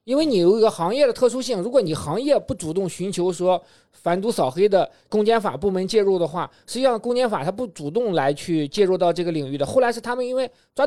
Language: Chinese